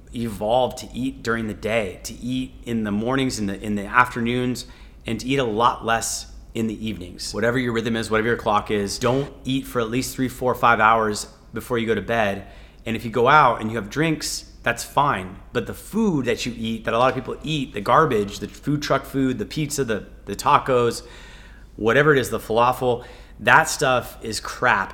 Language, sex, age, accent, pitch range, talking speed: English, male, 30-49, American, 110-130 Hz, 215 wpm